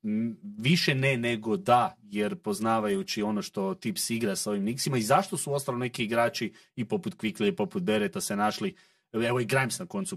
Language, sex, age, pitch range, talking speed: Croatian, male, 30-49, 115-190 Hz, 190 wpm